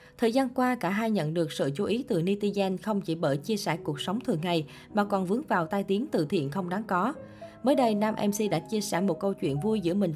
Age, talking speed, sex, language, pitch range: 20-39, 265 wpm, female, Vietnamese, 170-225 Hz